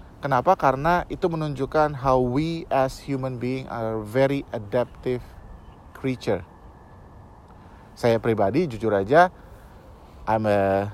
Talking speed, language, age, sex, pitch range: 105 wpm, Indonesian, 30-49, male, 95-145 Hz